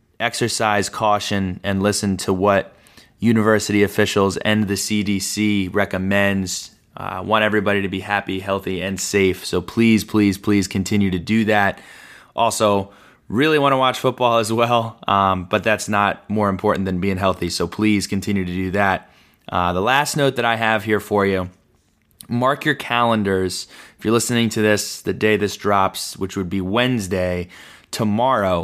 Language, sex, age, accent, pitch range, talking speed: English, male, 20-39, American, 95-110 Hz, 165 wpm